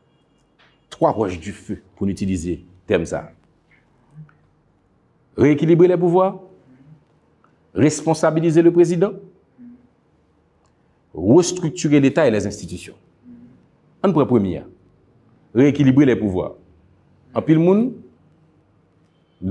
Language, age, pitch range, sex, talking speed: French, 50-69, 95-140 Hz, male, 85 wpm